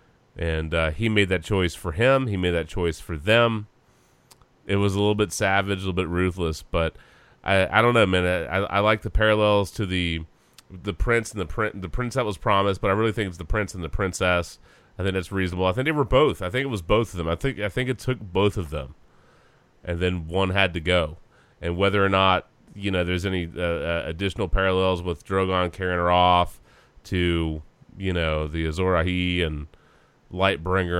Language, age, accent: English, 30-49, American